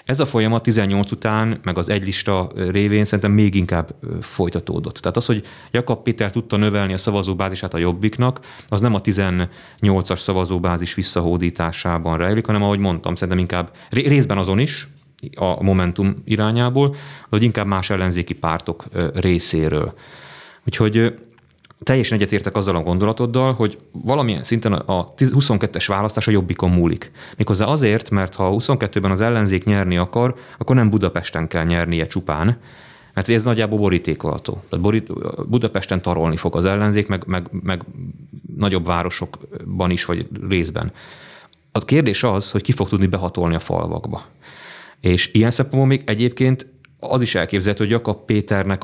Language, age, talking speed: Hungarian, 30-49, 145 wpm